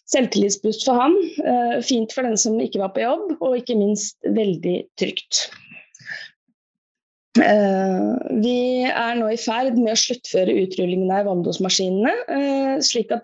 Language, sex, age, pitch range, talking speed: English, female, 20-39, 195-250 Hz, 135 wpm